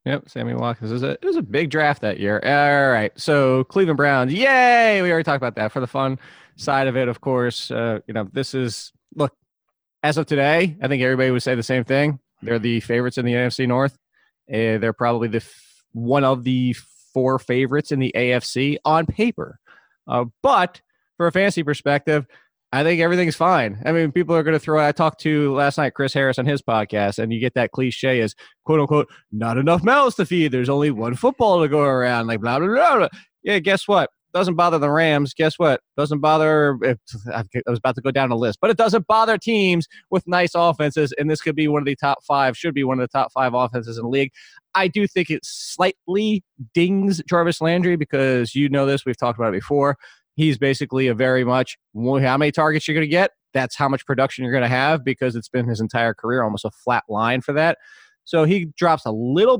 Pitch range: 125-165 Hz